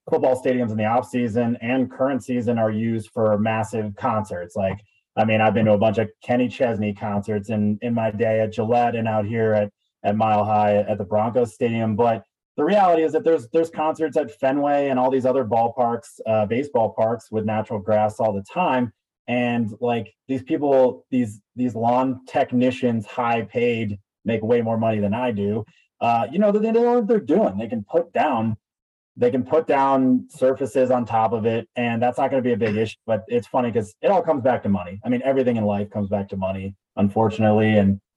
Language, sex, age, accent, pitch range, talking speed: English, male, 30-49, American, 105-125 Hz, 210 wpm